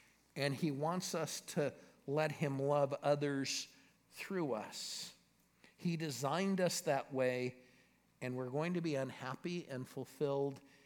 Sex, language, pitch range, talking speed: male, English, 135-175 Hz, 135 wpm